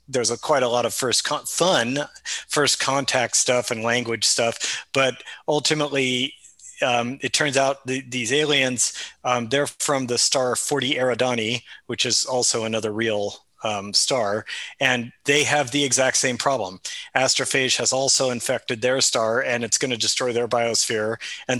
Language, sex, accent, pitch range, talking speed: English, male, American, 115-135 Hz, 165 wpm